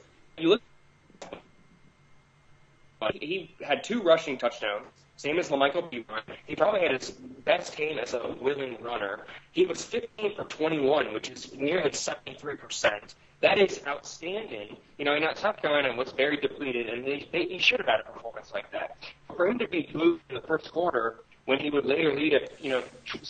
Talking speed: 190 wpm